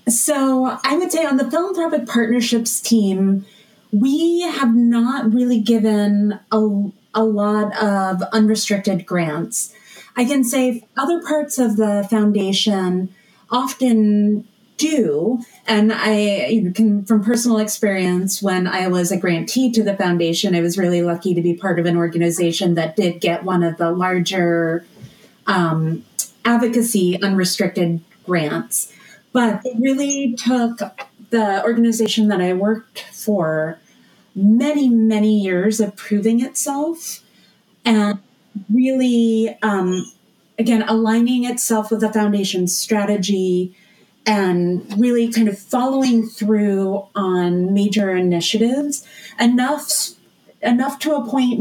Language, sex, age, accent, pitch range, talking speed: English, female, 30-49, American, 195-235 Hz, 120 wpm